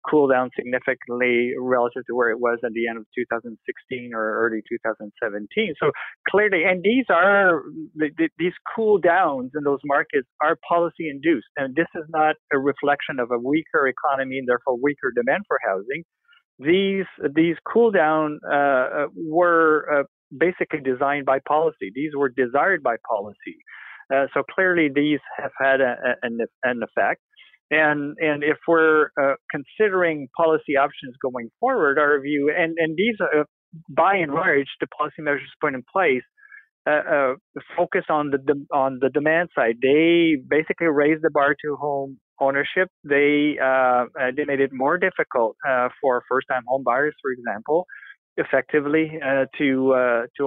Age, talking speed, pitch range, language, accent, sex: 50-69, 165 wpm, 130-165 Hz, English, American, male